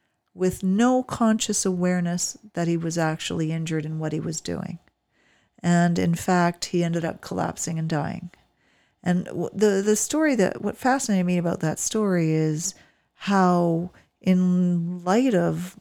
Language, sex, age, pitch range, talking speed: English, female, 40-59, 170-205 Hz, 150 wpm